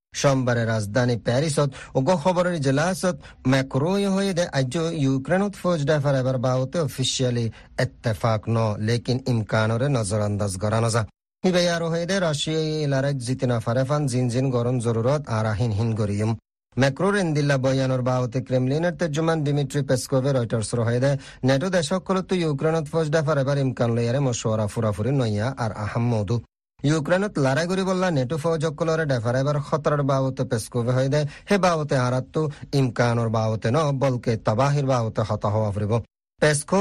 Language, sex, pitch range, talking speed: Bengali, male, 120-155 Hz, 70 wpm